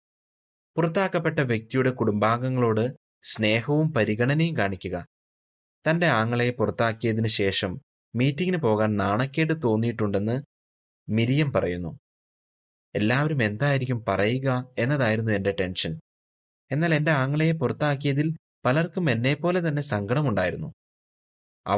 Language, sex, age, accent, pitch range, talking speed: Malayalam, male, 30-49, native, 100-135 Hz, 85 wpm